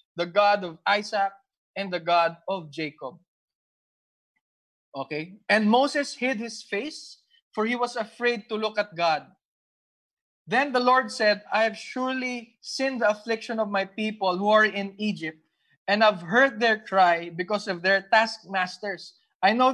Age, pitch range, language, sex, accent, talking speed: 20-39, 175-225 Hz, English, male, Filipino, 155 wpm